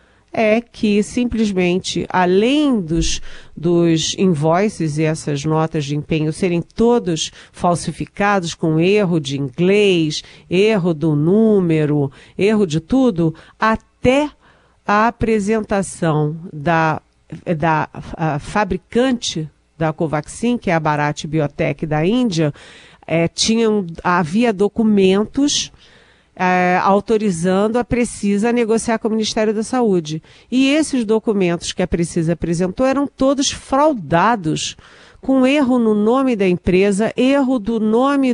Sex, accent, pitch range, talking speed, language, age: female, Brazilian, 170-235 Hz, 110 wpm, Portuguese, 50-69